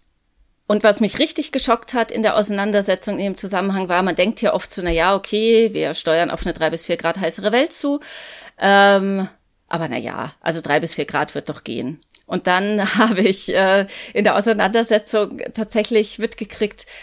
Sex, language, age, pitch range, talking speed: female, German, 30-49, 180-220 Hz, 185 wpm